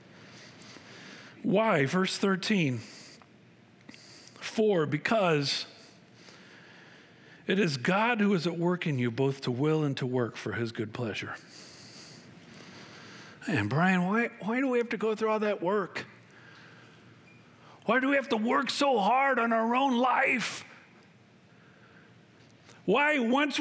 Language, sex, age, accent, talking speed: English, male, 50-69, American, 130 wpm